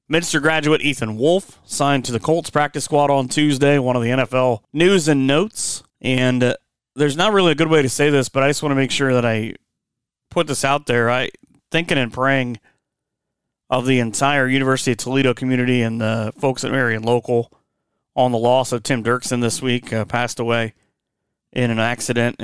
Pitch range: 120-150 Hz